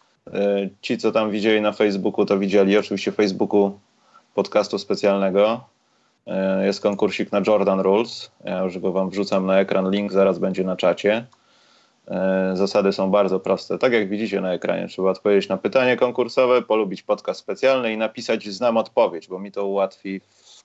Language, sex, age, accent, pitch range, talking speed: Polish, male, 30-49, native, 95-110 Hz, 160 wpm